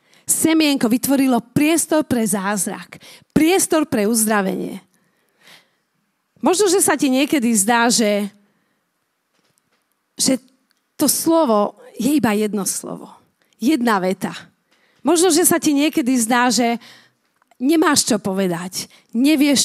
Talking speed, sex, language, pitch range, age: 105 wpm, female, Slovak, 215-295 Hz, 40-59